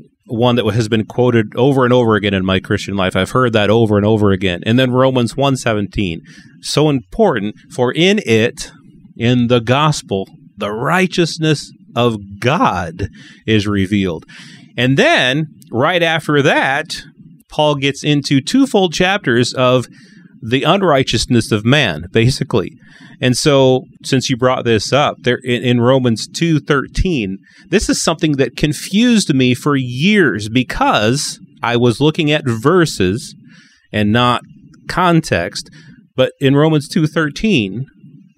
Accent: American